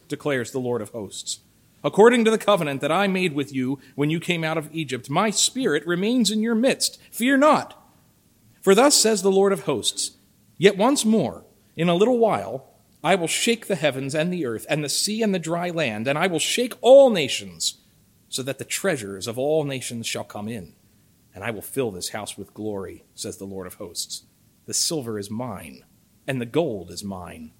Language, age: English, 40-59